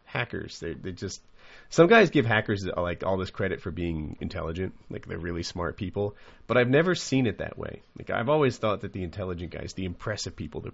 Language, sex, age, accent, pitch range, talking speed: English, male, 30-49, American, 85-105 Hz, 220 wpm